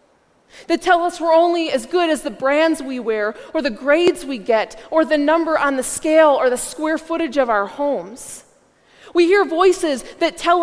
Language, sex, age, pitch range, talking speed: English, female, 20-39, 265-340 Hz, 200 wpm